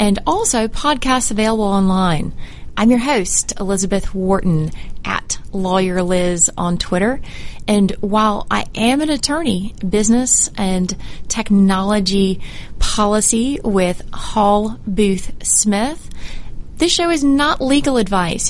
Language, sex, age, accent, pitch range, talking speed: English, female, 30-49, American, 185-240 Hz, 115 wpm